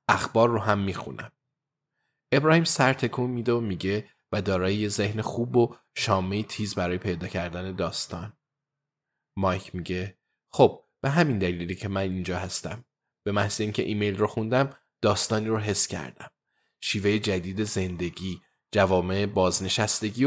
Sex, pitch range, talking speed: male, 95-120 Hz, 135 wpm